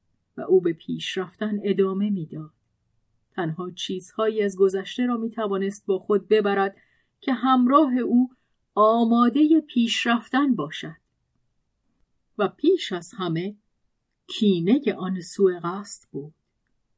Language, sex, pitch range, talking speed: Persian, female, 175-245 Hz, 115 wpm